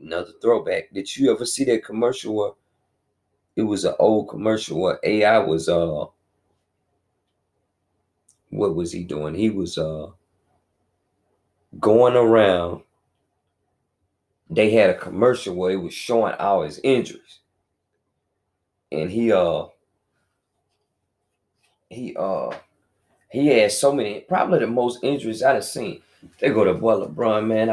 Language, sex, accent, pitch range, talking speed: English, male, American, 95-115 Hz, 130 wpm